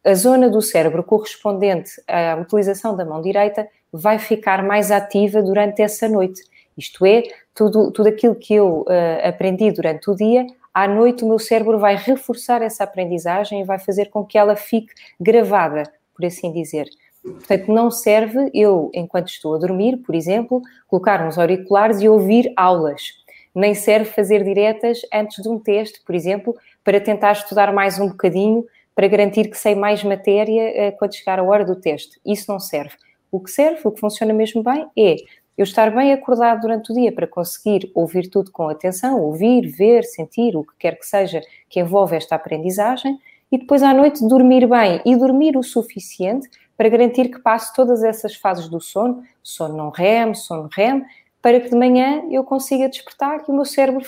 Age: 20-39